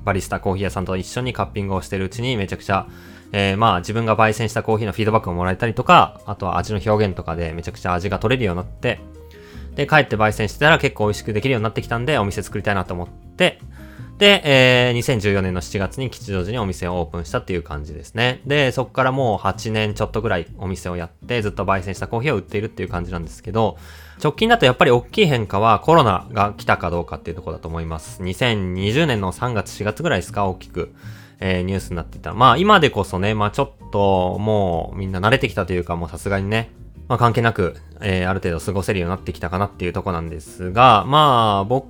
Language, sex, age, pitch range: Japanese, male, 20-39, 90-120 Hz